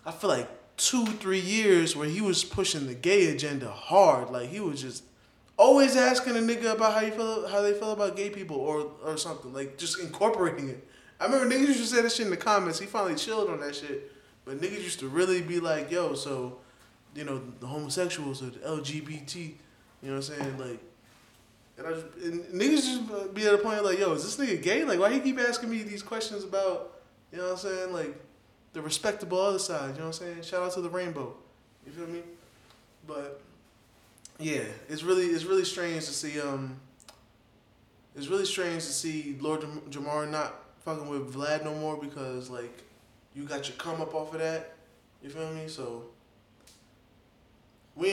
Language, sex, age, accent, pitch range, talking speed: English, male, 20-39, American, 140-195 Hz, 210 wpm